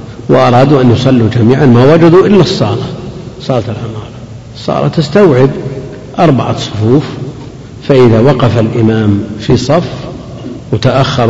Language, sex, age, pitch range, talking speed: Arabic, male, 50-69, 115-140 Hz, 105 wpm